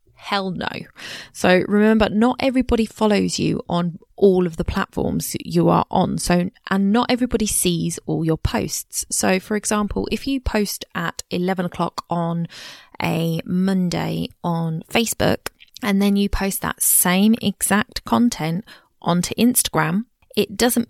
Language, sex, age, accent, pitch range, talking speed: English, female, 20-39, British, 165-205 Hz, 145 wpm